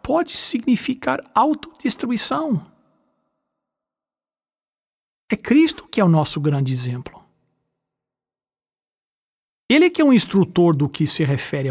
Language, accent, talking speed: English, Brazilian, 105 wpm